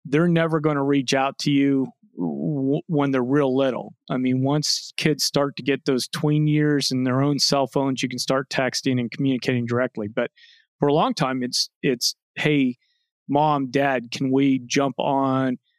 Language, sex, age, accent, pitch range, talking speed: English, male, 40-59, American, 130-150 Hz, 185 wpm